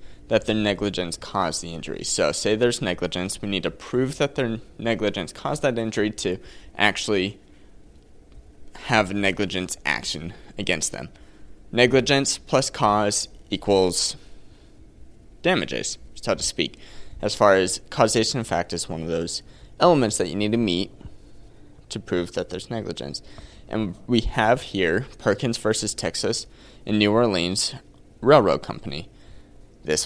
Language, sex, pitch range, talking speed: English, male, 90-115 Hz, 140 wpm